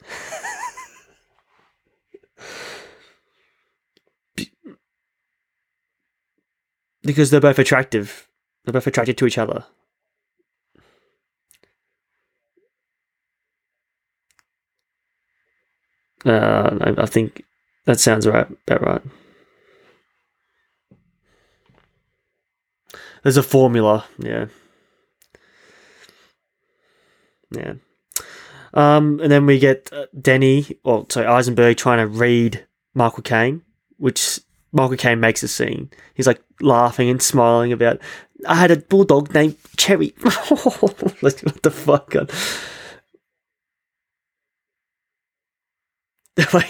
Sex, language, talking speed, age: male, English, 80 wpm, 20-39